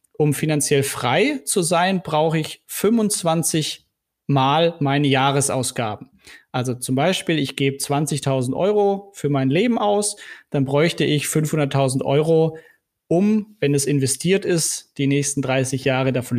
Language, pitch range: German, 140-180 Hz